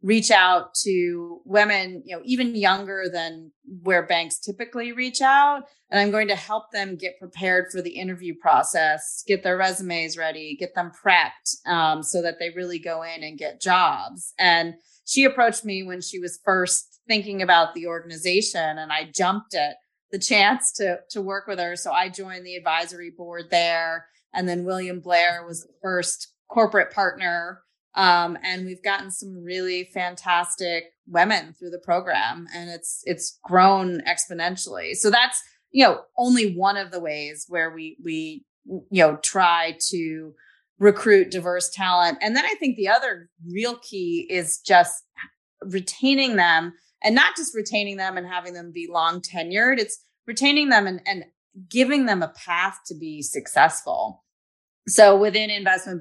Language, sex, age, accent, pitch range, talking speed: English, female, 30-49, American, 170-200 Hz, 165 wpm